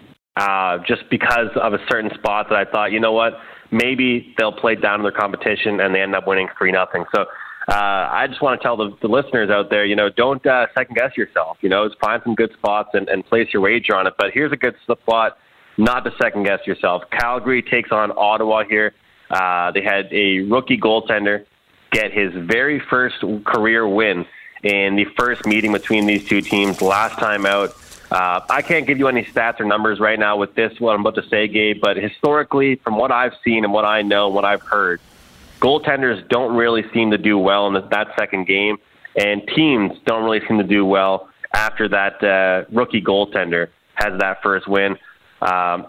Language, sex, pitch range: English, male, 100-115 Hz